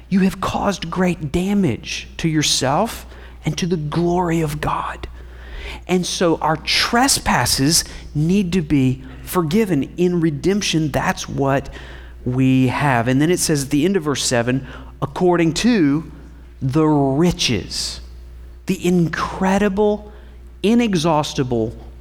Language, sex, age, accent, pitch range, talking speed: English, male, 40-59, American, 115-170 Hz, 120 wpm